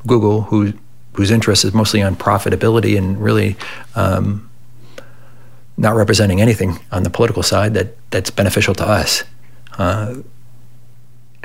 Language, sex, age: English, male, 40-59